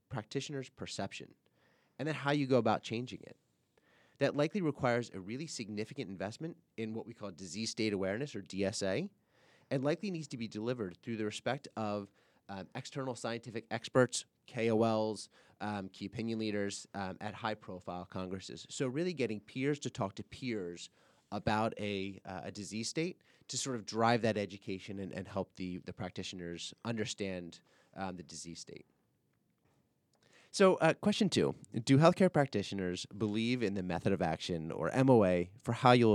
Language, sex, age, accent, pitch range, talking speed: English, male, 30-49, American, 95-130 Hz, 160 wpm